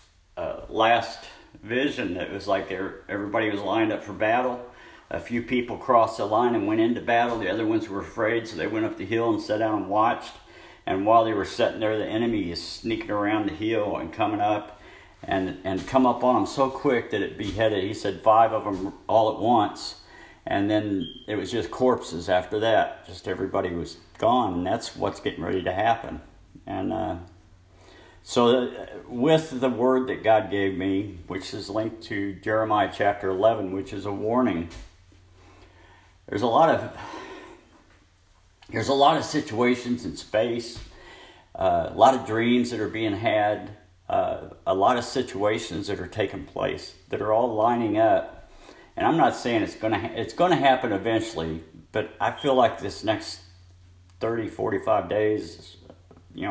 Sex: male